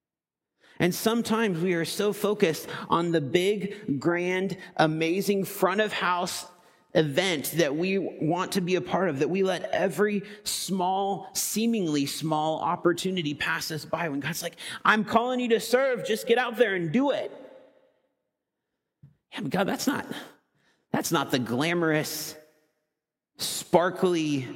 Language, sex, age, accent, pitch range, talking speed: English, male, 40-59, American, 150-190 Hz, 145 wpm